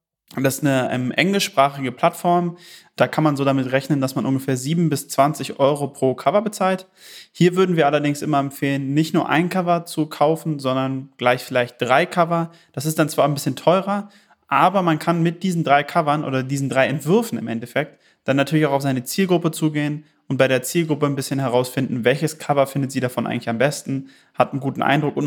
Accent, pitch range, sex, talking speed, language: German, 130-160 Hz, male, 200 wpm, German